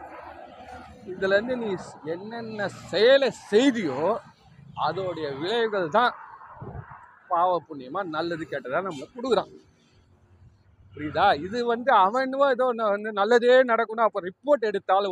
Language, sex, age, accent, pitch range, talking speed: Tamil, male, 40-59, native, 155-225 Hz, 100 wpm